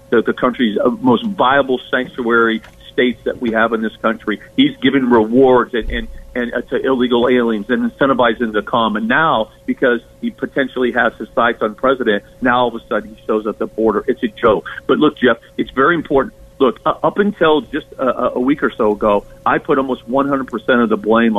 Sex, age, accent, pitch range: male, 50-69, American, 120-180 Hz